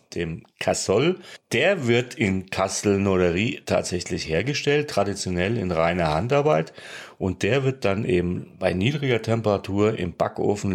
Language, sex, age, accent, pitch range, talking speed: German, male, 40-59, German, 95-125 Hz, 125 wpm